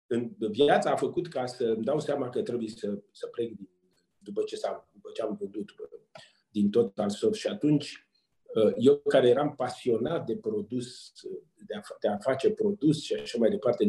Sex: male